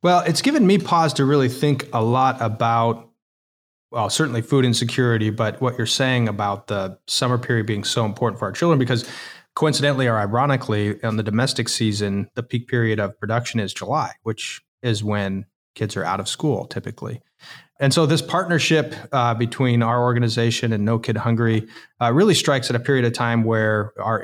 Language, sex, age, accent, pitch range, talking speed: English, male, 30-49, American, 110-125 Hz, 185 wpm